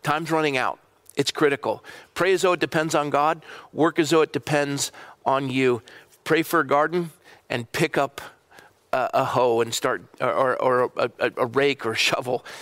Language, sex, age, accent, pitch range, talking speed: English, male, 40-59, American, 125-150 Hz, 190 wpm